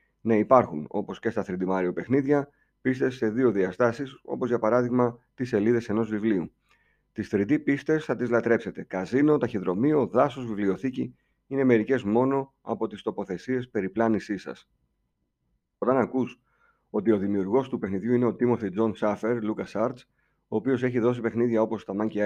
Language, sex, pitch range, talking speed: Greek, male, 105-130 Hz, 160 wpm